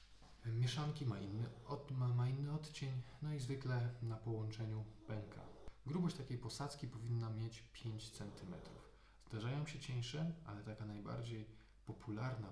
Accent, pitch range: native, 105-125 Hz